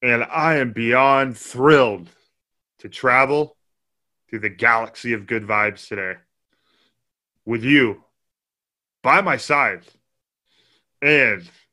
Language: English